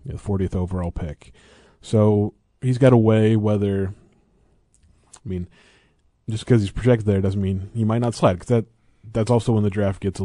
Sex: male